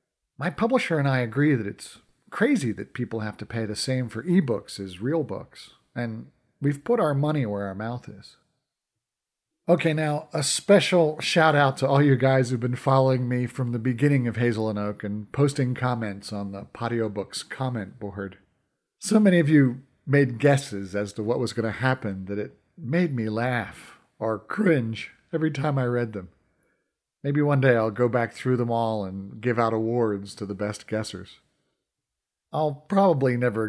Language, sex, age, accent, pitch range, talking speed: English, male, 40-59, American, 105-145 Hz, 185 wpm